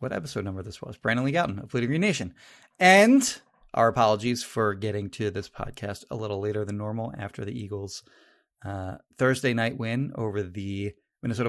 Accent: American